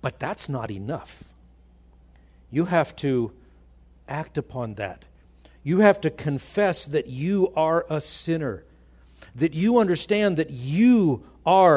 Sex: male